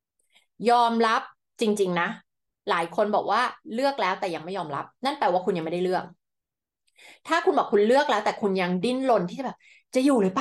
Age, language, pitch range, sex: 20-39, Thai, 180-240 Hz, female